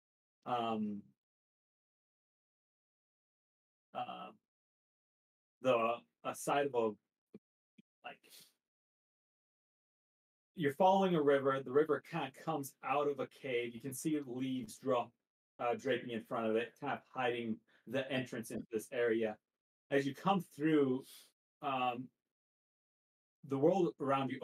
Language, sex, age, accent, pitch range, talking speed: English, male, 40-59, American, 115-145 Hz, 120 wpm